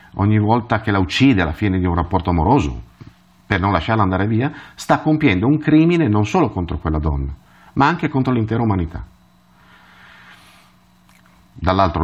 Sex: male